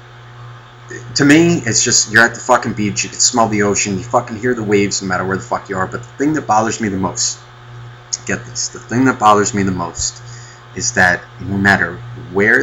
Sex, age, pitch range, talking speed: male, 30-49, 105-120 Hz, 235 wpm